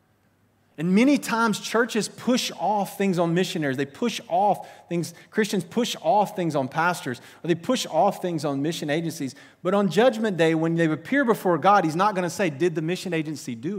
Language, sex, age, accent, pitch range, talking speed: English, male, 30-49, American, 125-190 Hz, 200 wpm